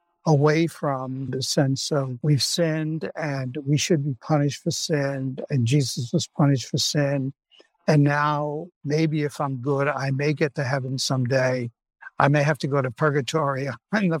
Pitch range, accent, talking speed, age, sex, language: 140-170 Hz, American, 175 wpm, 60-79, male, English